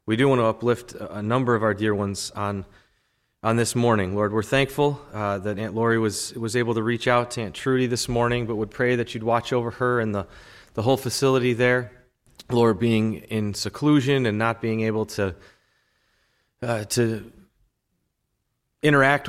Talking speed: 185 wpm